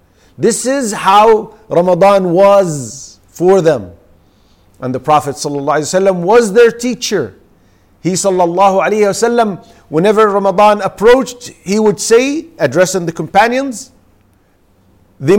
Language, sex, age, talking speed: English, male, 50-69, 100 wpm